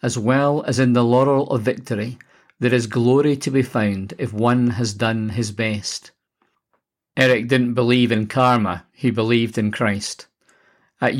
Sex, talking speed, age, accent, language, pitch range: male, 160 wpm, 50-69, British, English, 115-130 Hz